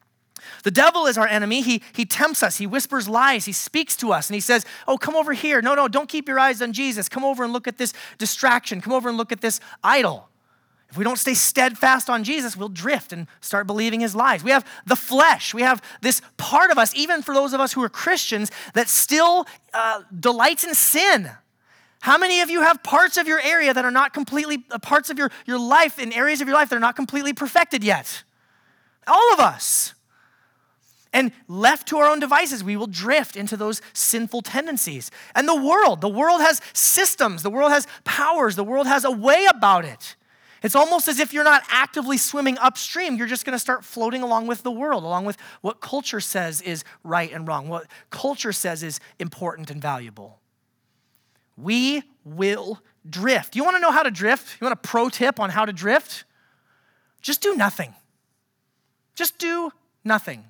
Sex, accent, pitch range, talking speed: male, American, 210-290 Hz, 205 wpm